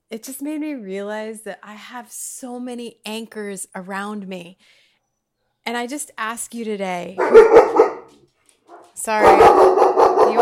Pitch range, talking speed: 190-255 Hz, 120 wpm